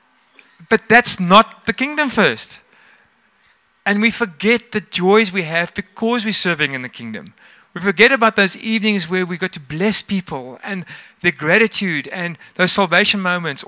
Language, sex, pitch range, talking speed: English, male, 150-215 Hz, 160 wpm